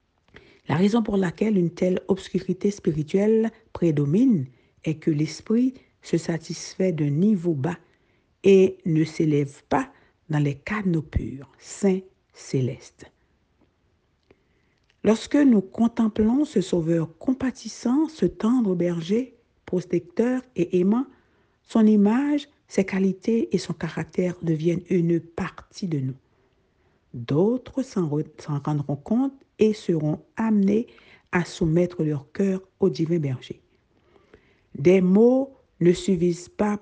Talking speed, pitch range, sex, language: 115 wpm, 165-215 Hz, female, French